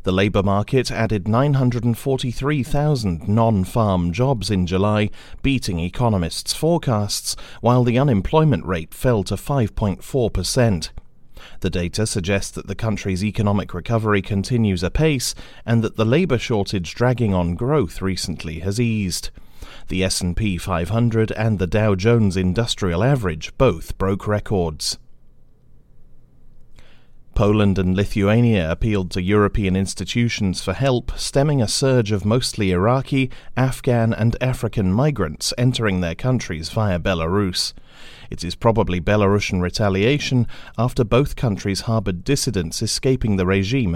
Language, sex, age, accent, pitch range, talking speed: English, male, 40-59, British, 95-120 Hz, 125 wpm